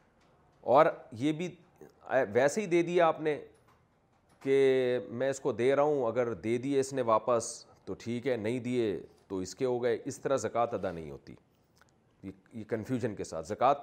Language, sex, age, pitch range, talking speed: Urdu, male, 40-59, 110-150 Hz, 190 wpm